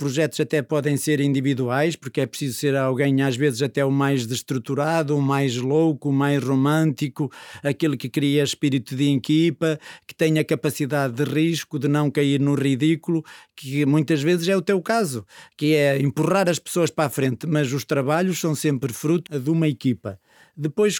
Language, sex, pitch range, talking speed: Portuguese, male, 145-180 Hz, 185 wpm